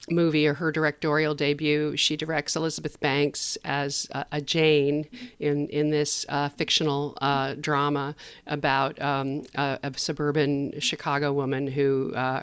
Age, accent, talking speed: 50-69, American, 135 wpm